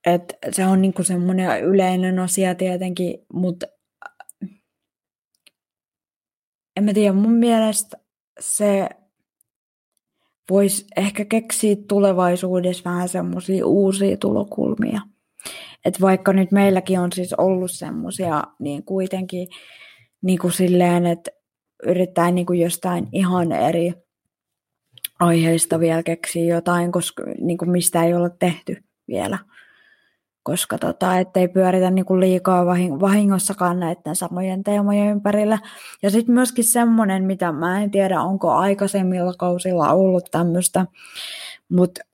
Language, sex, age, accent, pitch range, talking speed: Finnish, female, 20-39, native, 175-200 Hz, 110 wpm